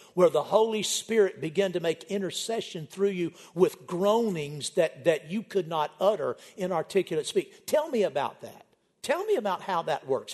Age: 50-69